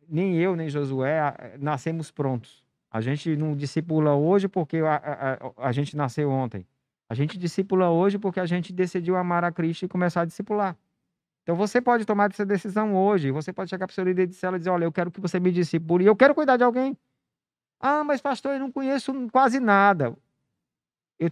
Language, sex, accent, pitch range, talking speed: Portuguese, male, Brazilian, 130-180 Hz, 205 wpm